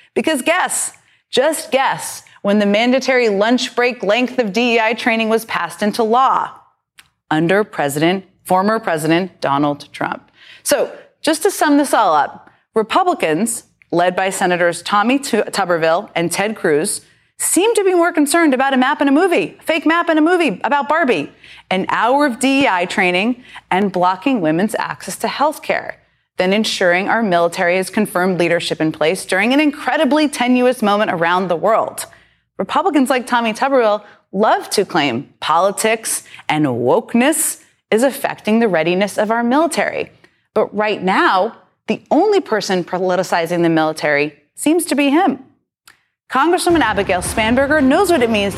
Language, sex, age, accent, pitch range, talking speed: English, female, 30-49, American, 185-280 Hz, 150 wpm